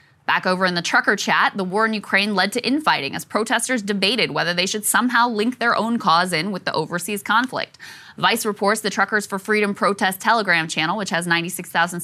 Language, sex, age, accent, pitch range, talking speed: English, female, 20-39, American, 190-250 Hz, 205 wpm